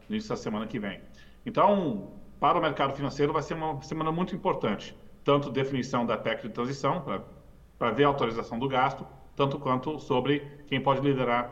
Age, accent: 40-59, Brazilian